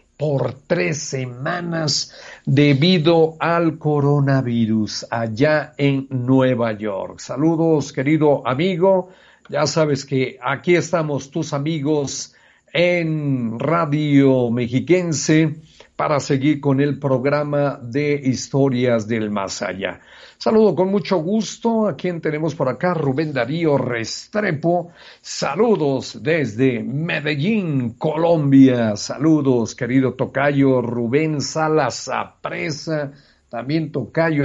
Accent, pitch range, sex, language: Mexican, 130-160 Hz, male, English